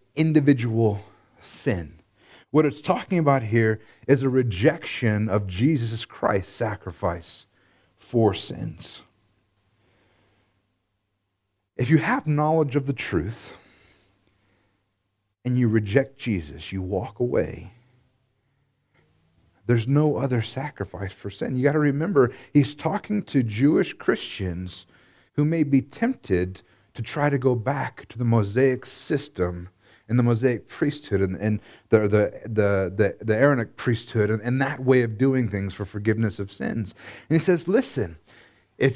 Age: 40-59